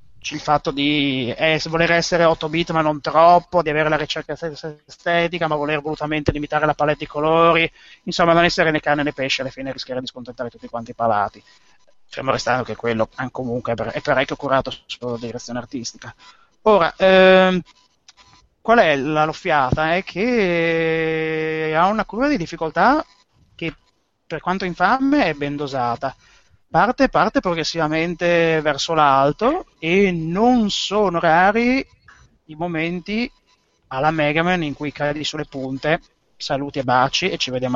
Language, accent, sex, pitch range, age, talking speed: Italian, native, male, 130-170 Hz, 30-49, 155 wpm